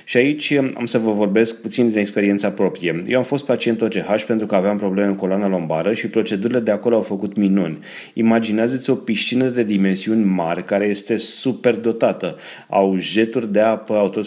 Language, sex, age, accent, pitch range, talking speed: Romanian, male, 30-49, native, 100-115 Hz, 190 wpm